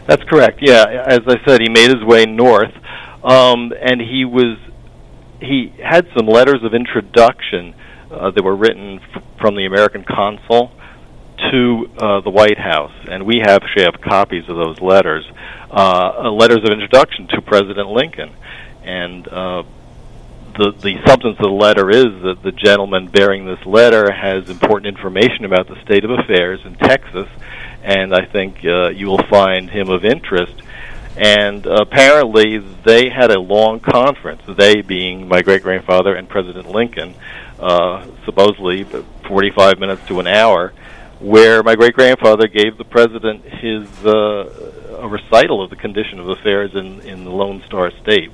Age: 50-69